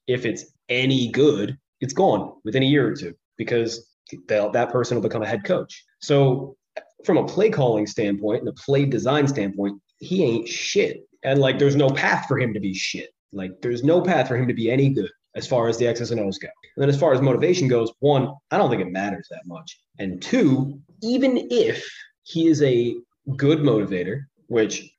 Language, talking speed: English, 210 wpm